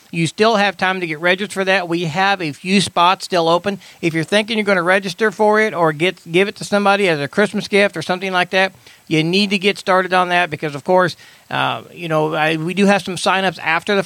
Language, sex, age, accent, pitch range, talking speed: English, male, 40-59, American, 165-200 Hz, 255 wpm